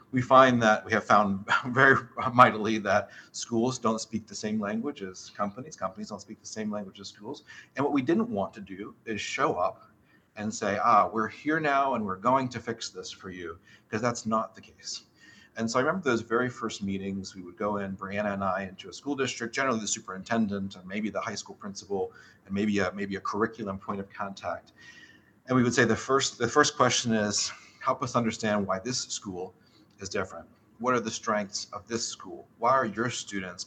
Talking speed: 215 wpm